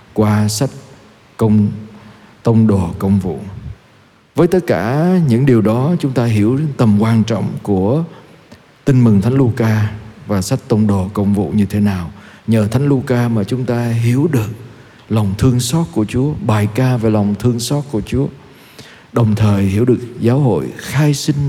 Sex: male